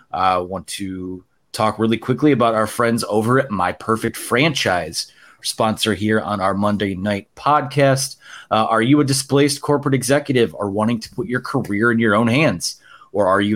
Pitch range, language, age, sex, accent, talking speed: 105-135 Hz, English, 30-49, male, American, 180 wpm